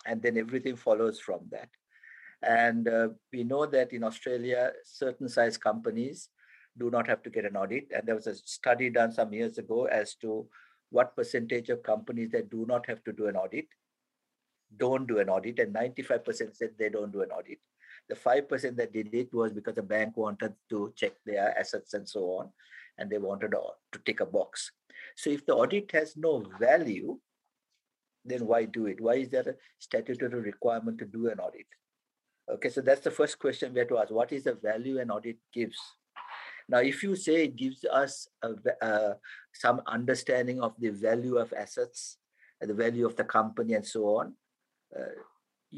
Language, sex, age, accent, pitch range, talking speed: English, male, 60-79, Indian, 115-165 Hz, 190 wpm